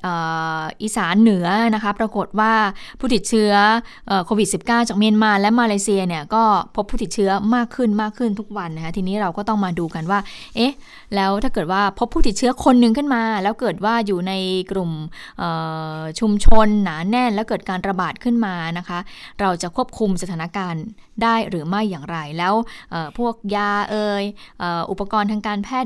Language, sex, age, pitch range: Thai, female, 20-39, 175-220 Hz